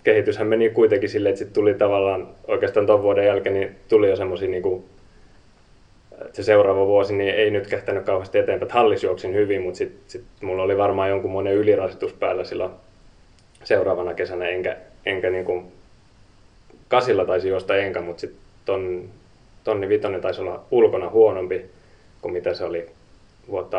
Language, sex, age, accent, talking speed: Finnish, male, 20-39, native, 155 wpm